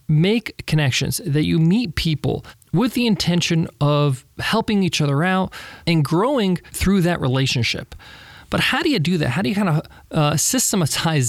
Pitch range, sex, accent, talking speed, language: 130-165 Hz, male, American, 170 wpm, English